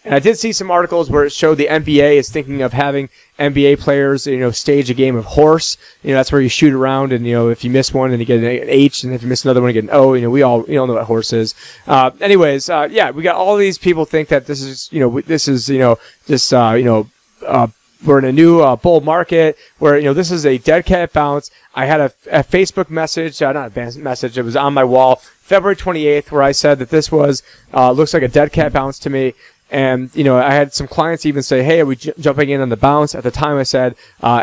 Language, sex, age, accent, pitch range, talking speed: English, male, 30-49, American, 125-150 Hz, 275 wpm